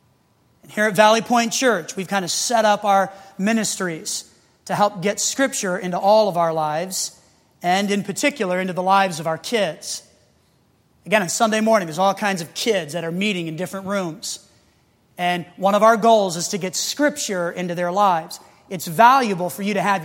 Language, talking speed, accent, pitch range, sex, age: English, 190 wpm, American, 180-220 Hz, male, 30-49